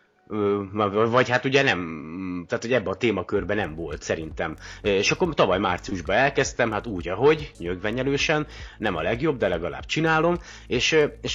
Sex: male